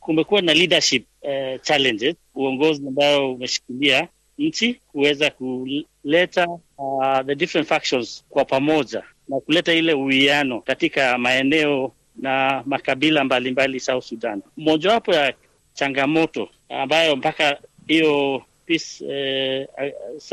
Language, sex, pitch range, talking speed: Swahili, male, 135-160 Hz, 105 wpm